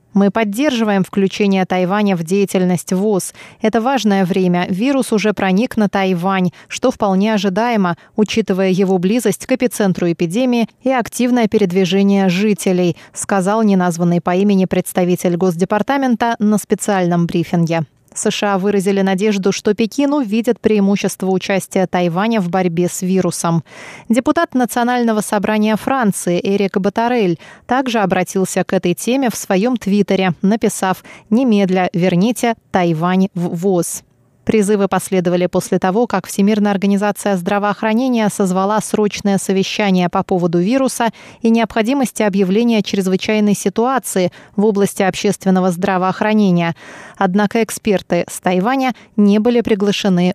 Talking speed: 120 wpm